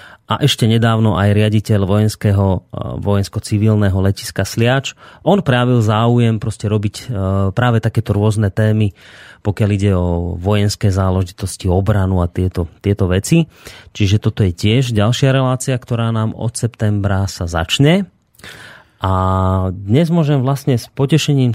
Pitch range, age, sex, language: 100-115 Hz, 30-49, male, Slovak